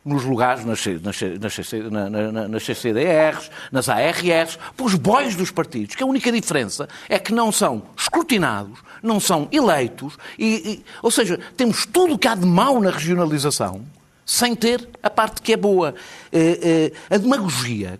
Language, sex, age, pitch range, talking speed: Portuguese, male, 50-69, 120-200 Hz, 155 wpm